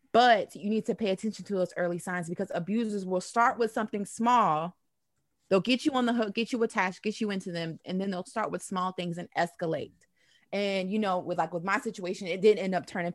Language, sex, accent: English, female, American